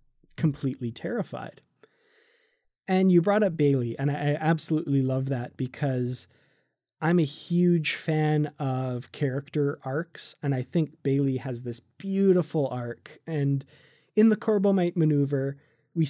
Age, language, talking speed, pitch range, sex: 20-39, English, 125 wpm, 130-155 Hz, male